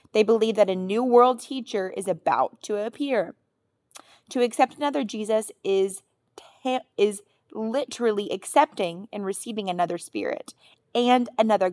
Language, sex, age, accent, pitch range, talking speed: English, female, 20-39, American, 190-240 Hz, 130 wpm